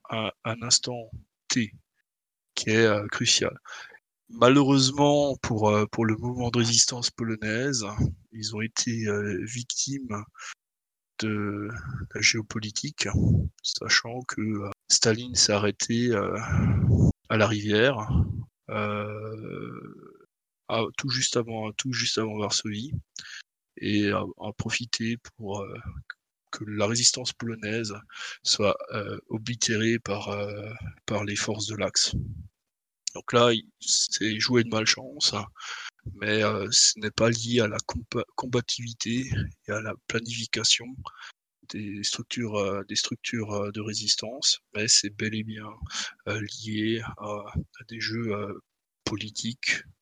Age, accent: 20-39, French